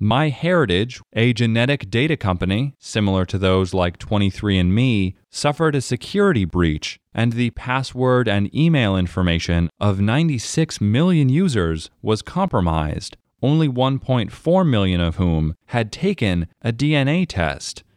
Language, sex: English, male